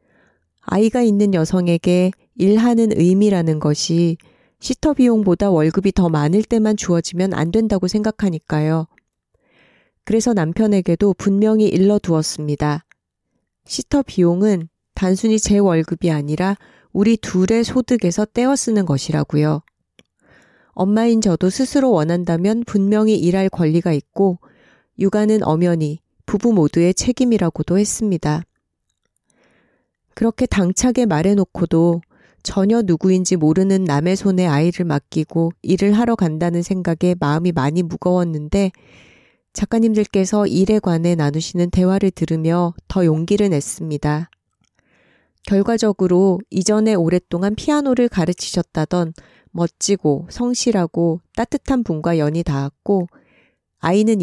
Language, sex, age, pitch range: Korean, female, 30-49, 165-210 Hz